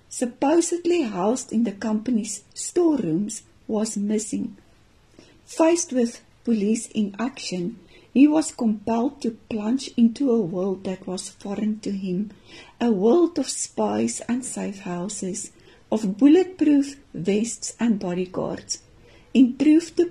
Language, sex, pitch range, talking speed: Dutch, female, 200-260 Hz, 120 wpm